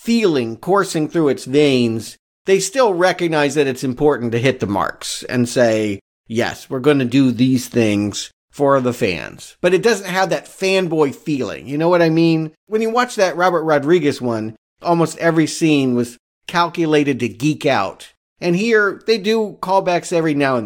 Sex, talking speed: male, 180 wpm